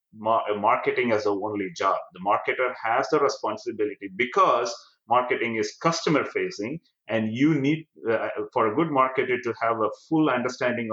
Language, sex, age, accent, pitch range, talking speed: English, male, 30-49, Indian, 110-140 Hz, 155 wpm